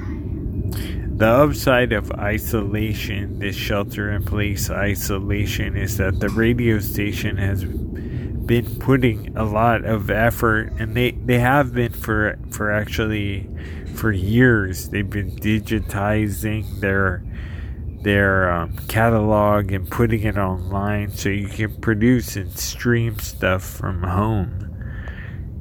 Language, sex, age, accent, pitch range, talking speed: English, male, 30-49, American, 95-110 Hz, 120 wpm